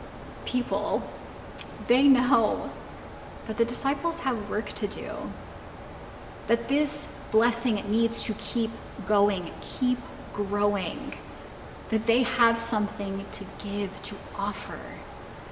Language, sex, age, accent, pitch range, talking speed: English, female, 20-39, American, 190-230 Hz, 105 wpm